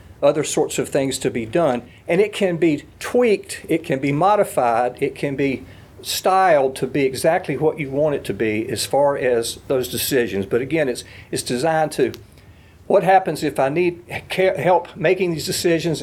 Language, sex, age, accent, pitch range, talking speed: English, male, 50-69, American, 125-185 Hz, 185 wpm